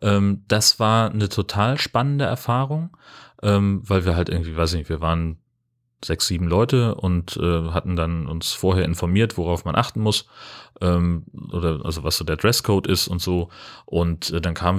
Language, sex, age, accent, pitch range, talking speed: German, male, 30-49, German, 90-115 Hz, 175 wpm